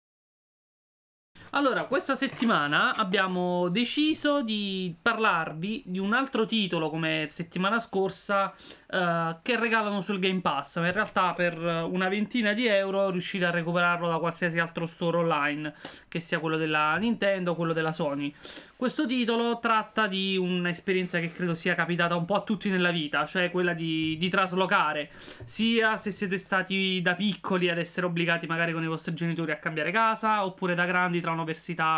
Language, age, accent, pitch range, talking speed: Italian, 30-49, native, 170-215 Hz, 165 wpm